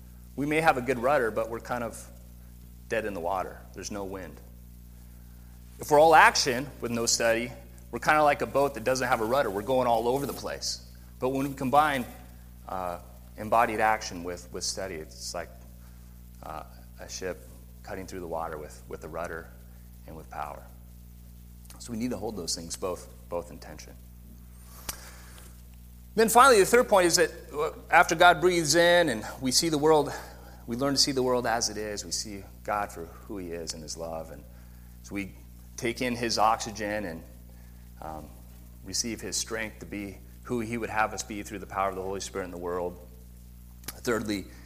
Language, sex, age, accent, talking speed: English, male, 30-49, American, 195 wpm